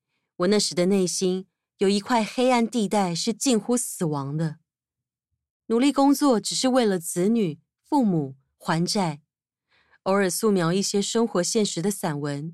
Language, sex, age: Chinese, female, 20-39